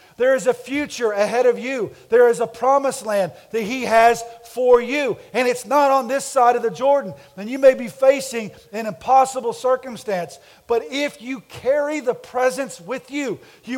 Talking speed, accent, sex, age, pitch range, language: 185 wpm, American, male, 50-69, 235-290 Hz, English